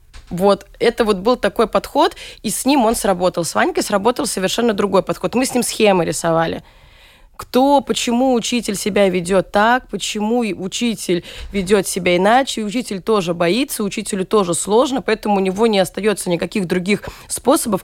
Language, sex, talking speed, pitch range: Russian, female, 160 wpm, 185-245 Hz